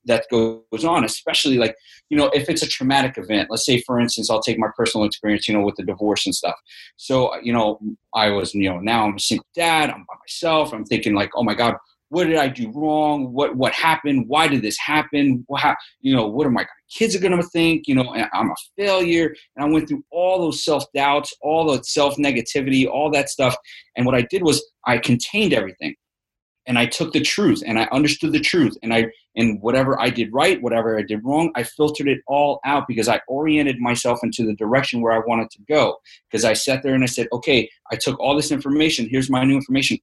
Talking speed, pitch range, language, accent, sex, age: 235 wpm, 115-145 Hz, English, American, male, 30-49